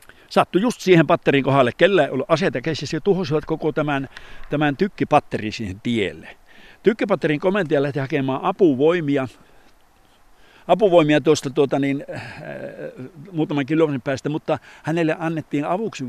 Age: 60-79